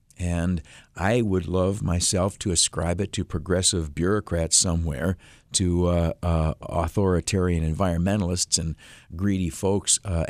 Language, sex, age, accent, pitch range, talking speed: English, male, 50-69, American, 85-105 Hz, 120 wpm